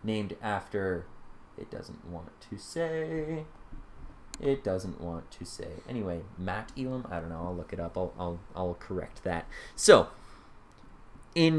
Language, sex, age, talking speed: English, male, 20-39, 150 wpm